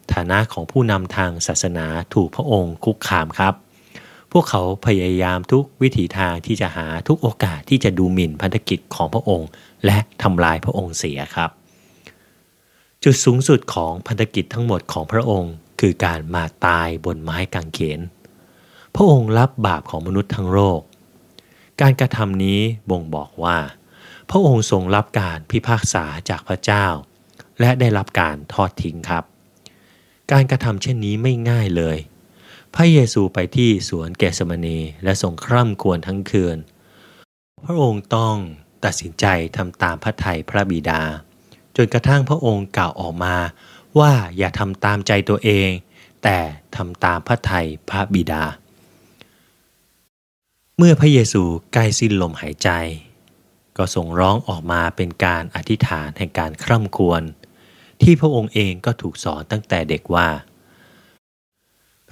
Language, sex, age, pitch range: Thai, male, 30-49, 85-115 Hz